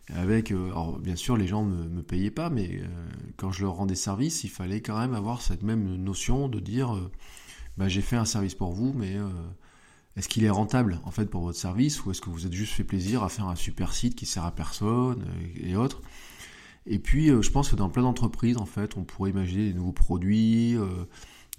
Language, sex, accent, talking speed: French, male, French, 235 wpm